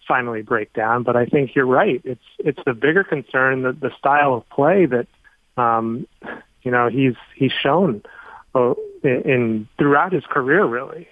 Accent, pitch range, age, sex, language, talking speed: American, 125-150 Hz, 30-49, male, English, 165 wpm